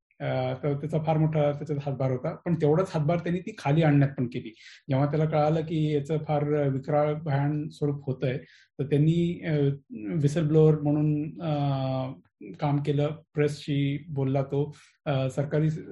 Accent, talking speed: native, 125 wpm